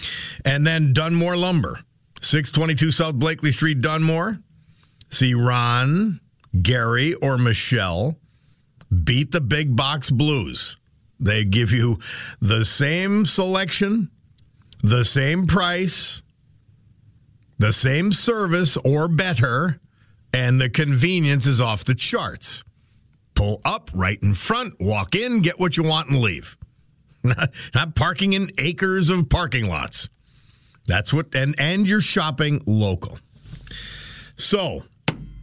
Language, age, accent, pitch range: English, 50-69, American, 120-160 Hz